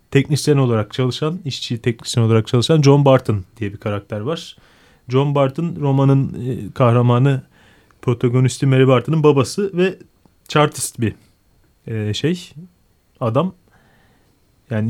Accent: native